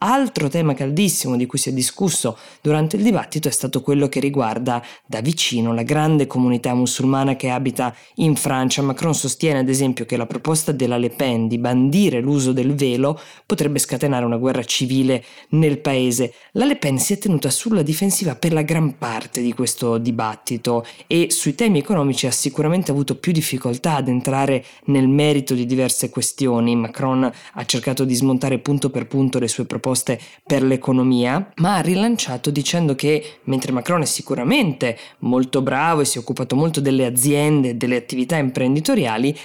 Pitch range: 125-150 Hz